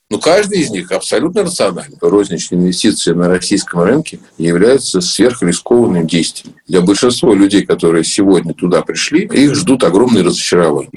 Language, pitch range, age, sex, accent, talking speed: Russian, 90-145 Hz, 50-69, male, native, 135 wpm